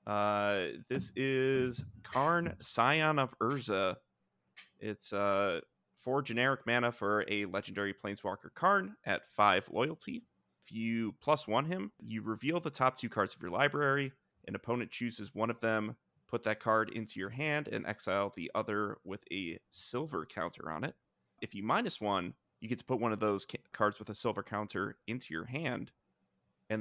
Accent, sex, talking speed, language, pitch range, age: American, male, 170 wpm, English, 105-130 Hz, 30-49